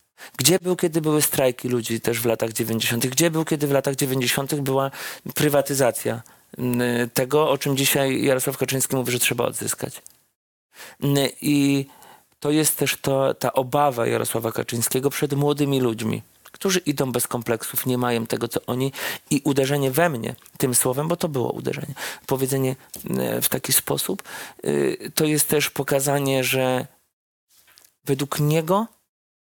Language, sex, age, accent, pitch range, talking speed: Polish, male, 40-59, native, 125-145 Hz, 140 wpm